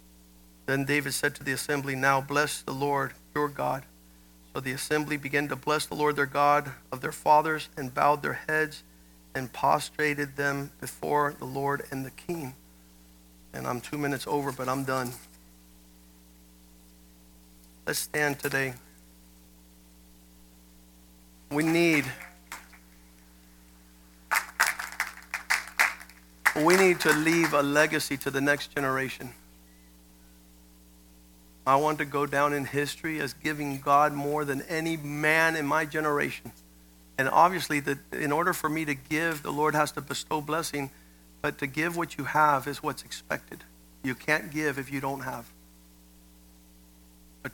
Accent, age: American, 50-69